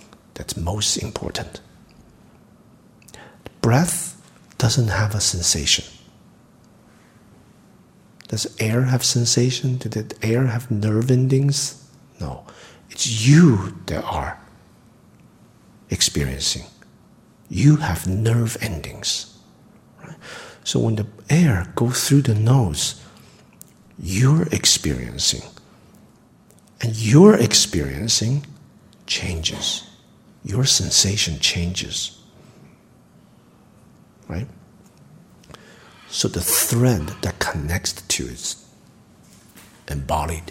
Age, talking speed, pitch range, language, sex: 50-69, 80 wpm, 85-130 Hz, English, male